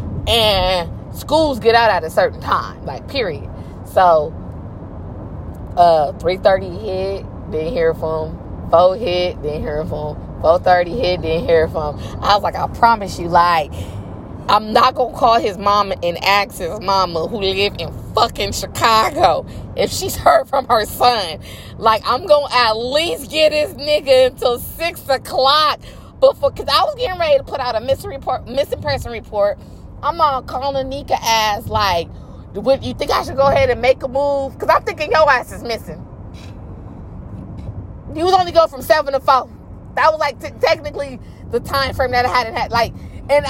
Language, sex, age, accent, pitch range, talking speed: English, female, 20-39, American, 175-275 Hz, 175 wpm